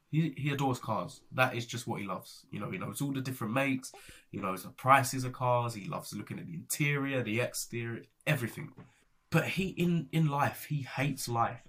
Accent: British